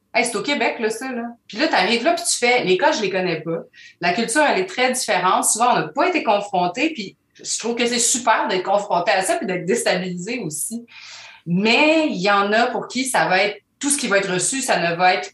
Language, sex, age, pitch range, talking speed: French, female, 30-49, 175-240 Hz, 260 wpm